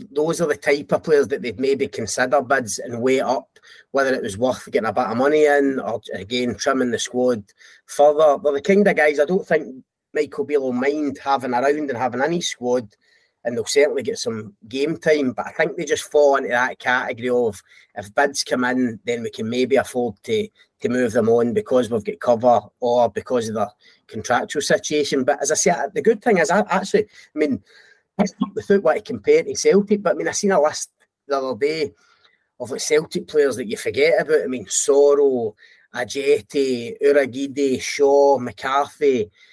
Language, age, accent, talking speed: English, 30-49, British, 200 wpm